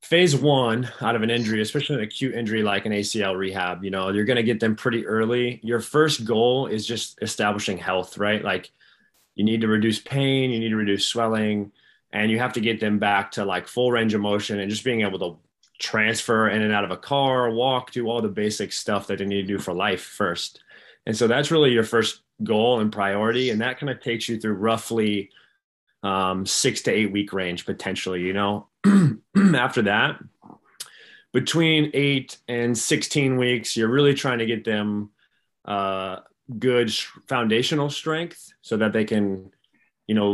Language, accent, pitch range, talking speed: English, American, 105-125 Hz, 195 wpm